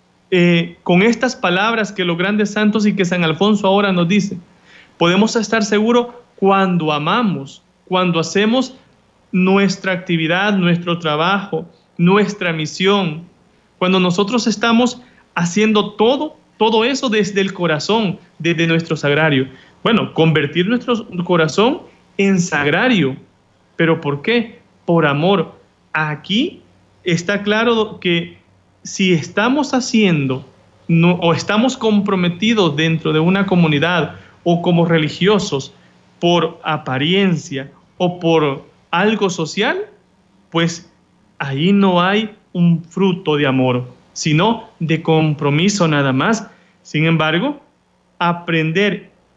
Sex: male